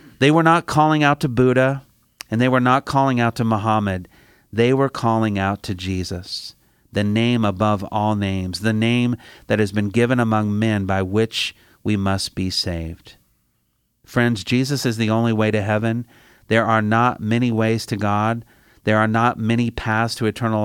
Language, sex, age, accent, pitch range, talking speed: English, male, 40-59, American, 100-120 Hz, 180 wpm